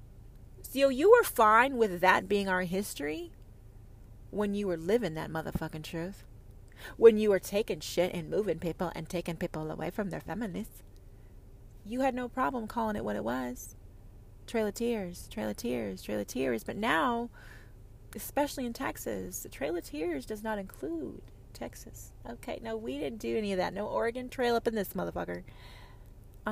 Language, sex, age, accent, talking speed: English, female, 30-49, American, 175 wpm